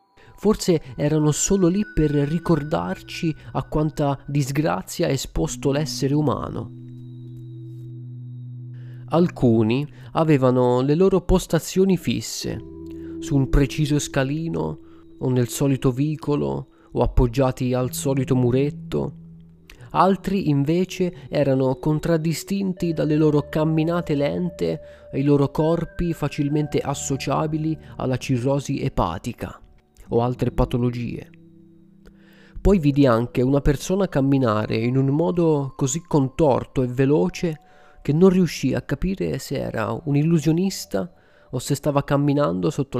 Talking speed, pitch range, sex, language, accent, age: 110 wpm, 120-160 Hz, male, Italian, native, 30-49